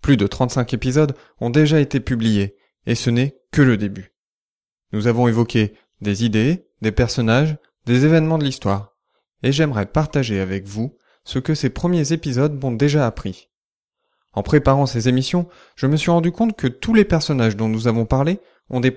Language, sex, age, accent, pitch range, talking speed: French, male, 20-39, French, 110-150 Hz, 180 wpm